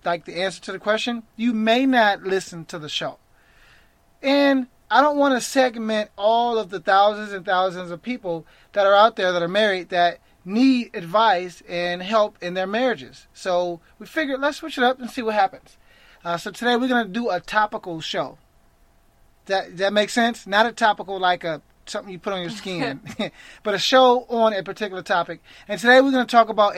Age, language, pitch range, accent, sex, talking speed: 30-49, English, 175-225 Hz, American, male, 210 wpm